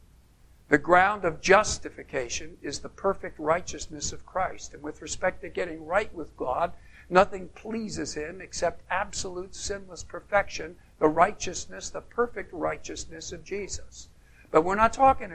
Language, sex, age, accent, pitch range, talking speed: English, male, 60-79, American, 150-220 Hz, 140 wpm